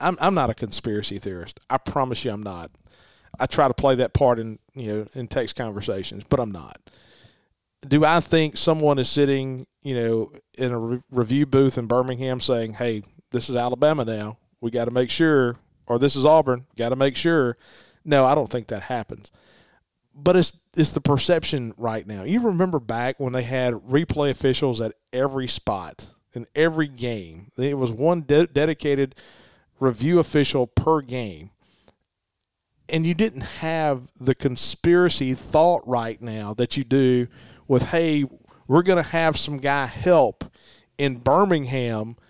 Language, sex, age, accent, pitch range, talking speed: English, male, 40-59, American, 120-155 Hz, 170 wpm